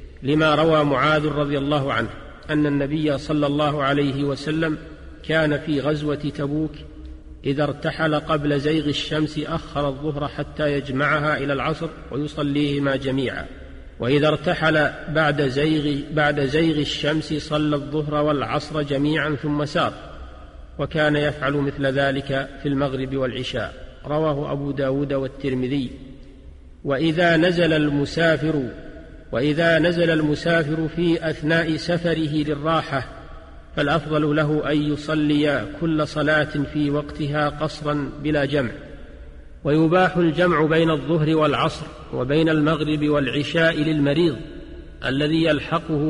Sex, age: male, 40-59